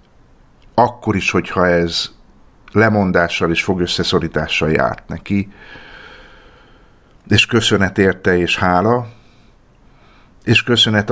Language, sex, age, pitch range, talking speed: Hungarian, male, 50-69, 90-110 Hz, 85 wpm